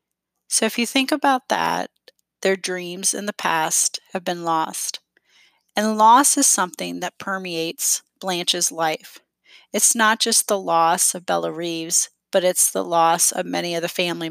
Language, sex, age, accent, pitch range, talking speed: English, female, 30-49, American, 170-210 Hz, 165 wpm